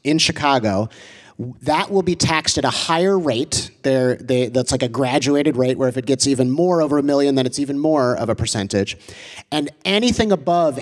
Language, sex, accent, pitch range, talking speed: English, male, American, 125-170 Hz, 200 wpm